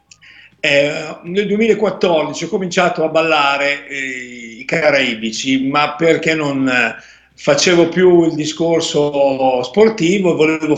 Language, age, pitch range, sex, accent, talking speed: Italian, 50-69, 155-185 Hz, male, native, 110 wpm